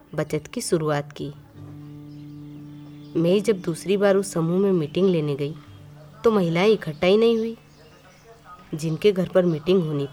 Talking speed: 150 wpm